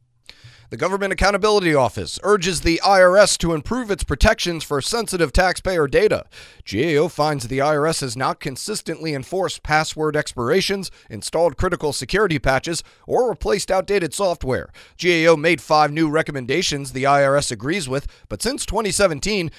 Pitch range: 130-180 Hz